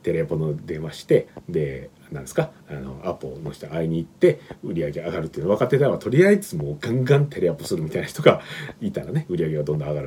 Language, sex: Japanese, male